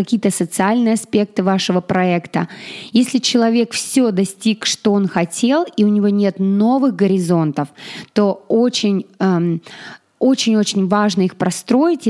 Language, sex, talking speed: Russian, female, 120 wpm